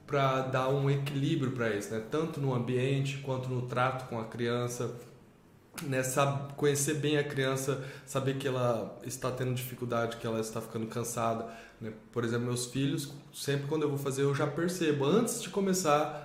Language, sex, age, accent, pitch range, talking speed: Portuguese, male, 20-39, Brazilian, 115-145 Hz, 180 wpm